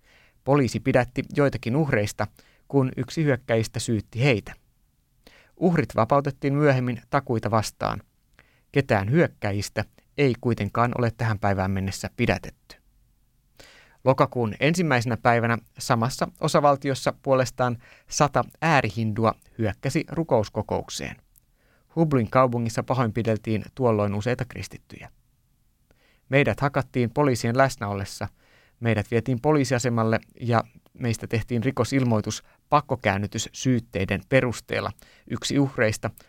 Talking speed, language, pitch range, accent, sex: 90 wpm, Finnish, 110-130 Hz, native, male